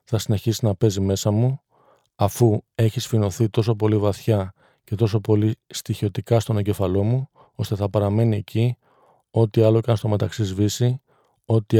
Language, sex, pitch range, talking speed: Greek, male, 105-115 Hz, 160 wpm